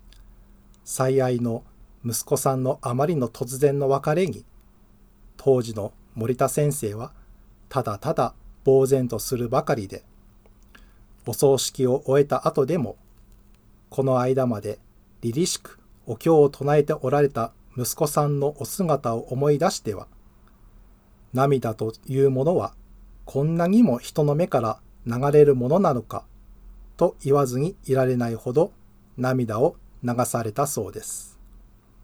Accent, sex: Japanese, male